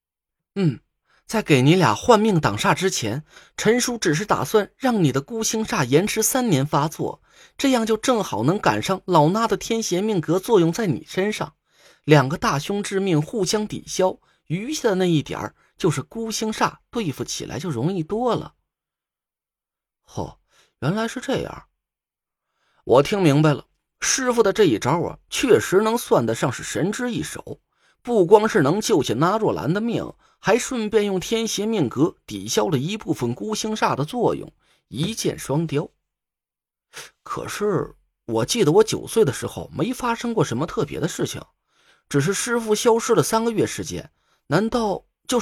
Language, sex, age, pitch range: Chinese, male, 20-39, 155-225 Hz